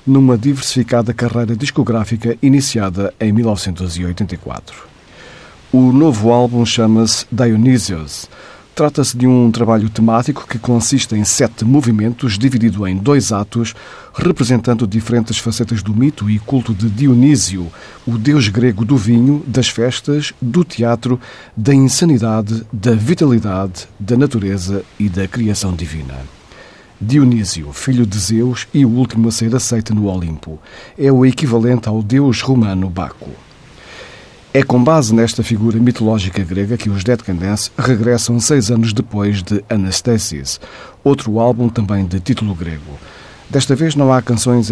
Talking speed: 135 wpm